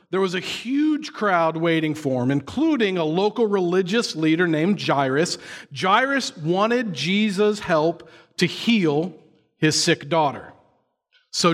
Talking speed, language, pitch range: 130 wpm, English, 155-210 Hz